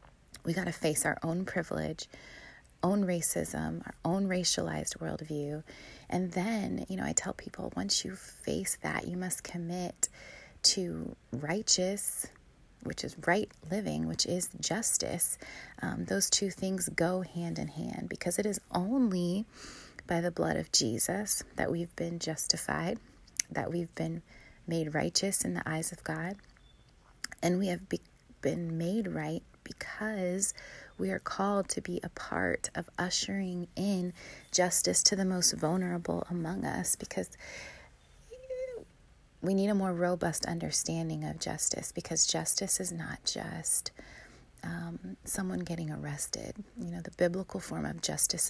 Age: 30-49